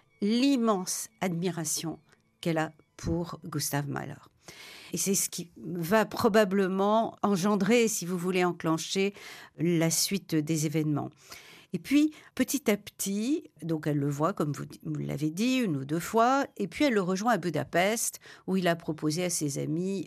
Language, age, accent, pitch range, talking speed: French, 50-69, French, 155-205 Hz, 160 wpm